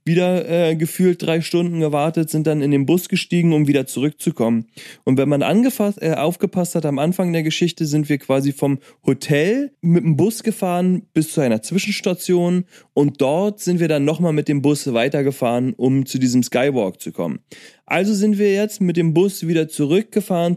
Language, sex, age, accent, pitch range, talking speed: German, male, 30-49, German, 145-185 Hz, 185 wpm